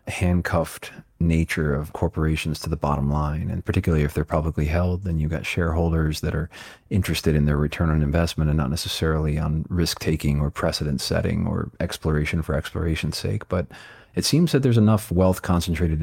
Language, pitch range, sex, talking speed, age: English, 75-90 Hz, male, 180 wpm, 30-49